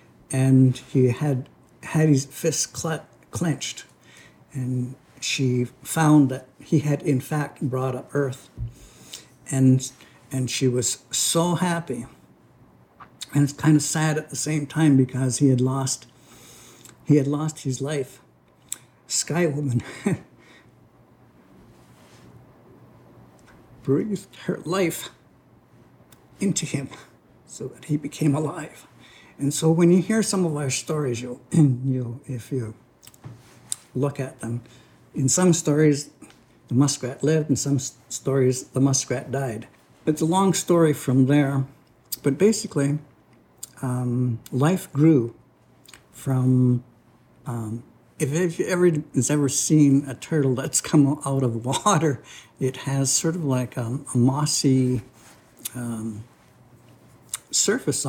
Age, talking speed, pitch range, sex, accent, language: 60-79, 125 wpm, 125-150 Hz, male, American, English